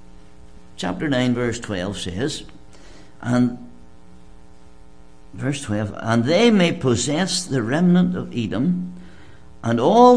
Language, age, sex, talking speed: English, 60-79, male, 105 wpm